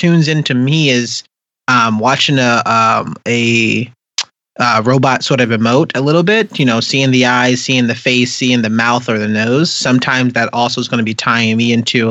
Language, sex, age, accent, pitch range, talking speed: English, male, 30-49, American, 115-135 Hz, 205 wpm